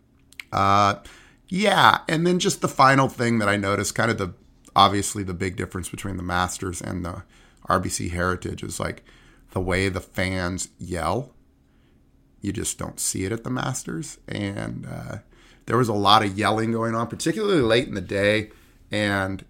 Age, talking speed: 30-49, 170 wpm